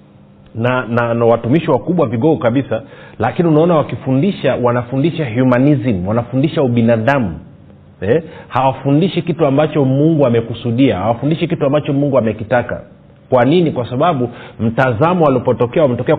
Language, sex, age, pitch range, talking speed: Swahili, male, 40-59, 120-155 Hz, 120 wpm